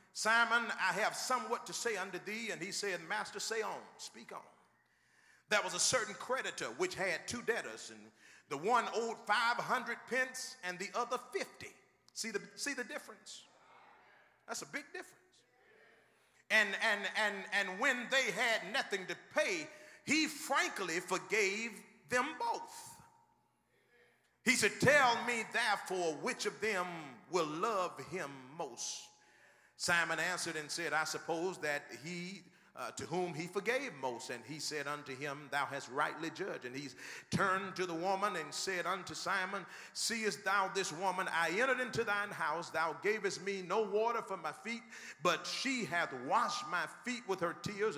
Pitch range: 170-235 Hz